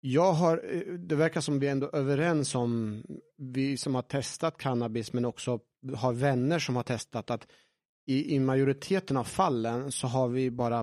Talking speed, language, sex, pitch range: 175 wpm, Swedish, male, 125-160 Hz